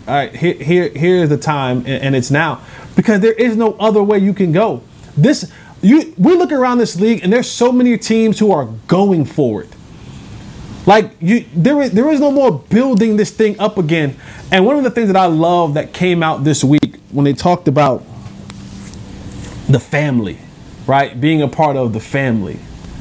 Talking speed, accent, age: 190 wpm, American, 20-39